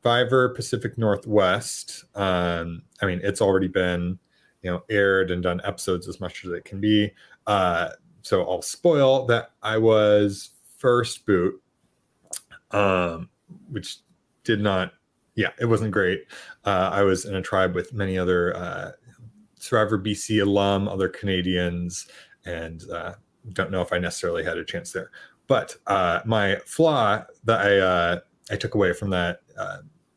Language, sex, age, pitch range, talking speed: English, male, 30-49, 90-110 Hz, 155 wpm